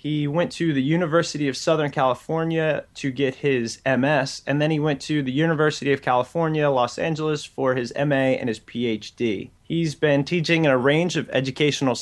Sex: male